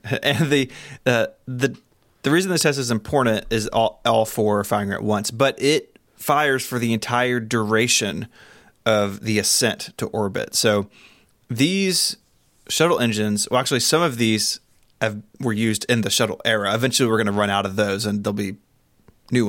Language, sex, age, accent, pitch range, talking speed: English, male, 30-49, American, 105-130 Hz, 180 wpm